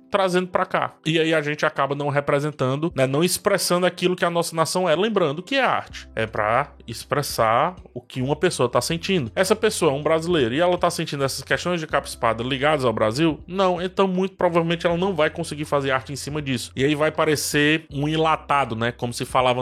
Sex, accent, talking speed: male, Brazilian, 215 wpm